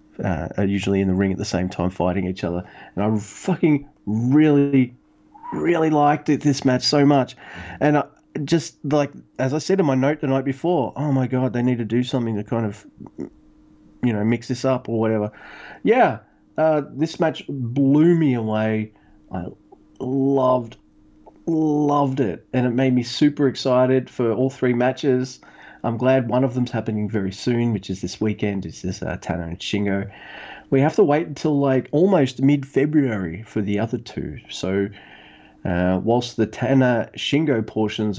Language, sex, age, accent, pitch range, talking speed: English, male, 30-49, Australian, 105-140 Hz, 175 wpm